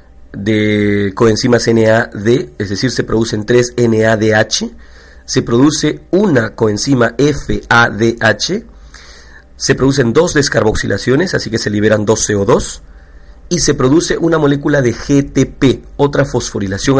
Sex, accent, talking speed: male, Mexican, 115 wpm